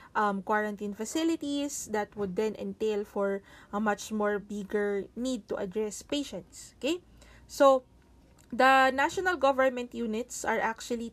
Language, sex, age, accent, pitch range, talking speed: English, female, 20-39, Filipino, 210-260 Hz, 130 wpm